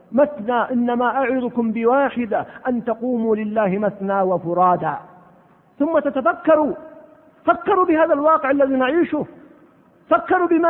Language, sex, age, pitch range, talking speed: Arabic, male, 50-69, 240-315 Hz, 100 wpm